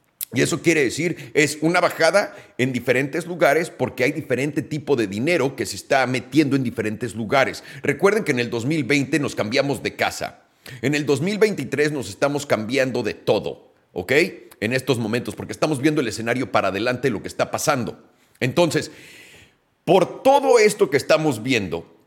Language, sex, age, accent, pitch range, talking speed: Spanish, male, 40-59, Mexican, 125-175 Hz, 170 wpm